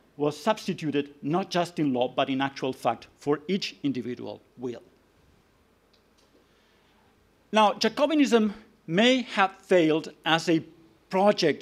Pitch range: 135-200 Hz